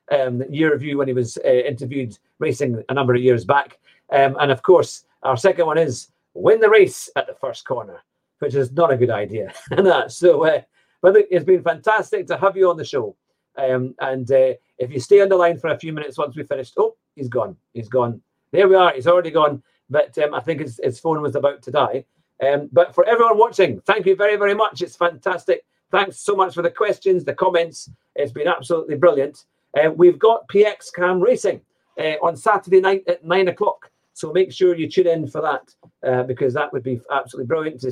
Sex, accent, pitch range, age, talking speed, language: male, British, 135-195 Hz, 50-69, 225 wpm, English